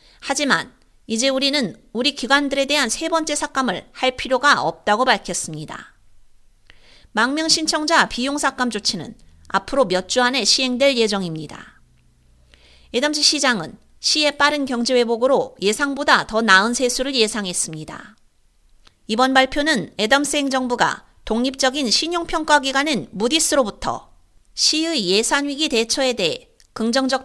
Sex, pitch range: female, 220-275 Hz